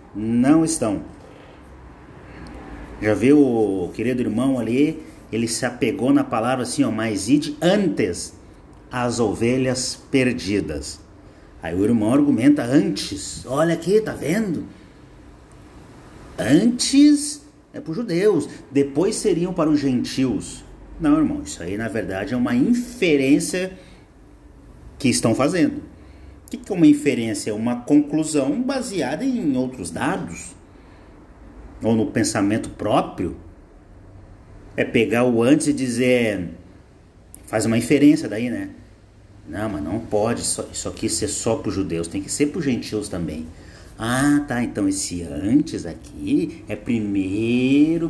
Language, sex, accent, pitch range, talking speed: Portuguese, male, Brazilian, 100-155 Hz, 130 wpm